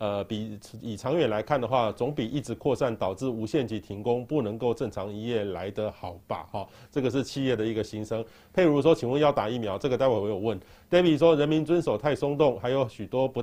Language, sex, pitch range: Chinese, male, 110-155 Hz